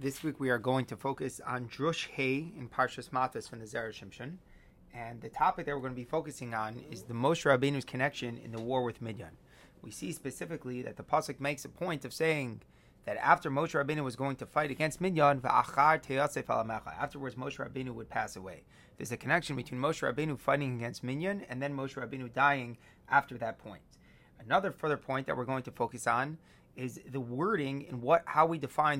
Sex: male